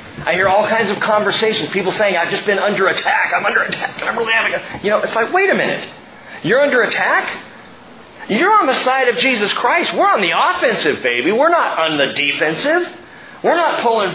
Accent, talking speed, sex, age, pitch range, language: American, 210 wpm, male, 40-59, 160-260 Hz, English